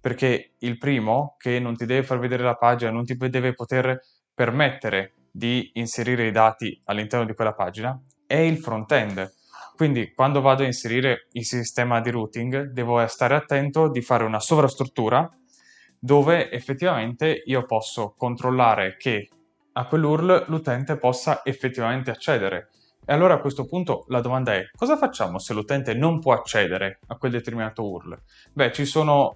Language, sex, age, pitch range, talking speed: Italian, male, 10-29, 110-135 Hz, 155 wpm